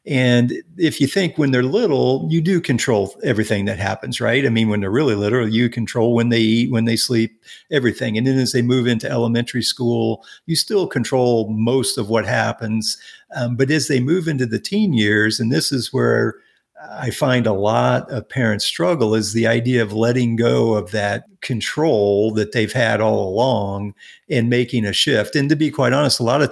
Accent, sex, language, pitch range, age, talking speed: American, male, English, 110-130 Hz, 50-69, 205 wpm